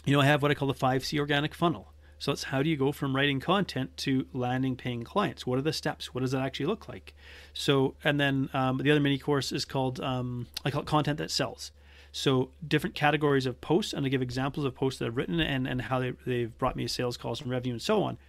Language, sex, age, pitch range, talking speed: English, male, 30-49, 125-150 Hz, 265 wpm